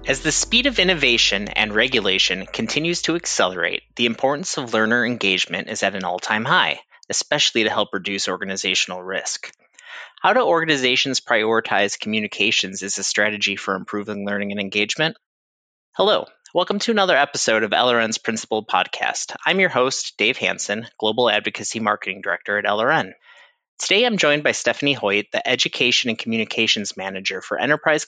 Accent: American